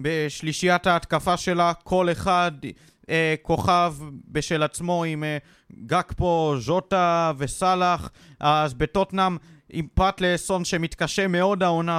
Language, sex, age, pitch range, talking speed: Hebrew, male, 30-49, 160-180 Hz, 110 wpm